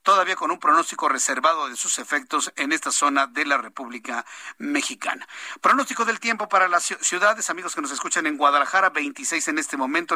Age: 50-69